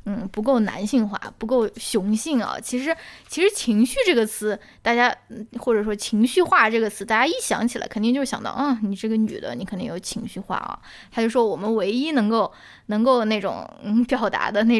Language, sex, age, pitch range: Chinese, female, 10-29, 215-255 Hz